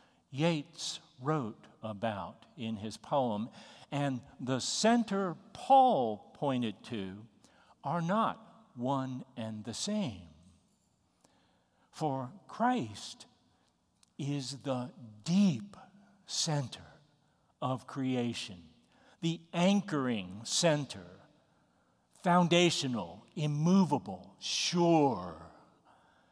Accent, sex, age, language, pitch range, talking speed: American, male, 60-79, English, 120-180 Hz, 75 wpm